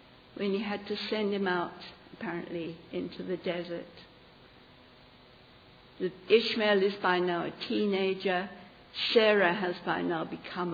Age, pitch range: 60-79, 165-195 Hz